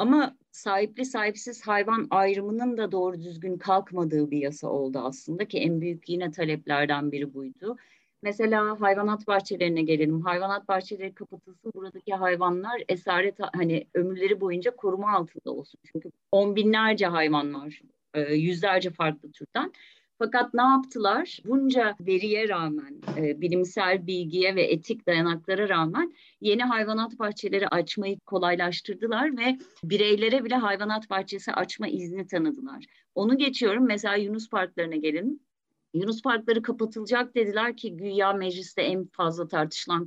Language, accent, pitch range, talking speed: Turkish, native, 175-225 Hz, 130 wpm